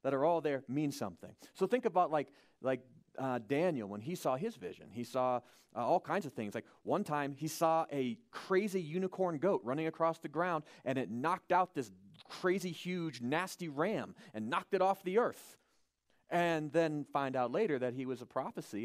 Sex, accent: male, American